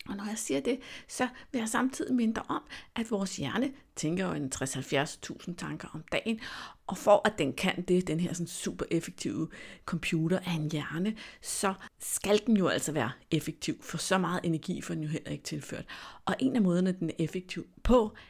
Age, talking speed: 60-79, 195 wpm